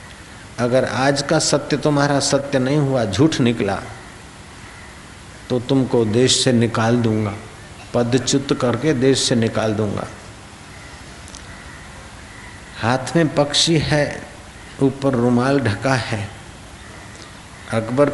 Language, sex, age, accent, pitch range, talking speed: Hindi, male, 60-79, native, 100-135 Hz, 105 wpm